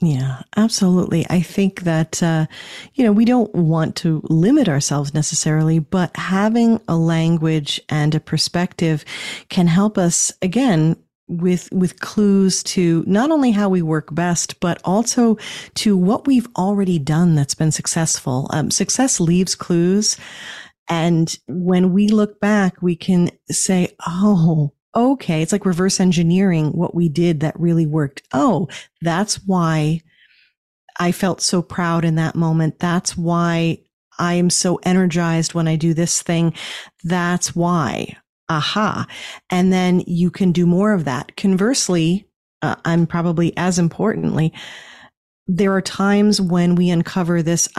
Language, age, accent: English, 40-59, American